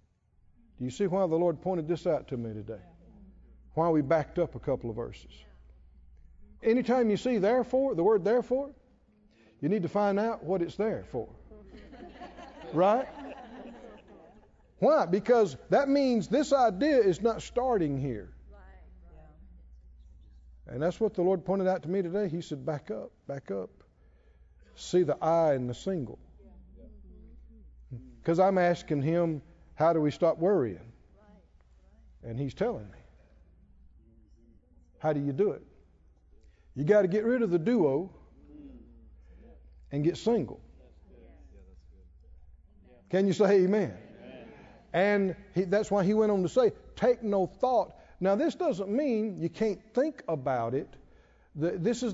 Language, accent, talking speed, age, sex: English, American, 140 wpm, 50-69, male